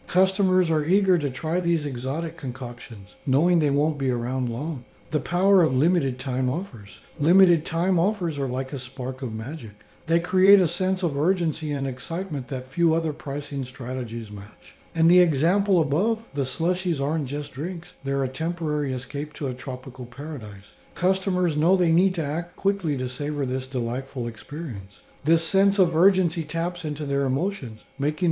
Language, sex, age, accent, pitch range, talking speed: English, male, 60-79, American, 130-170 Hz, 170 wpm